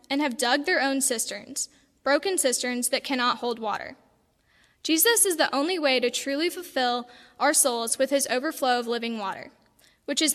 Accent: American